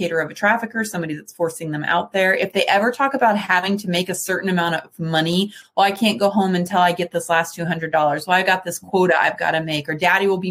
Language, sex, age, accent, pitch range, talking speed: English, female, 30-49, American, 170-200 Hz, 265 wpm